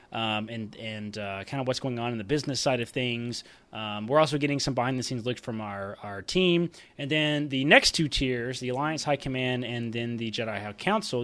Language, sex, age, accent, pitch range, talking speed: English, male, 20-39, American, 115-150 Hz, 235 wpm